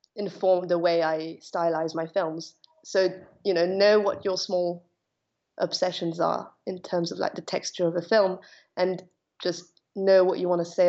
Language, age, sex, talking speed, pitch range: English, 20-39, female, 180 wpm, 175-200 Hz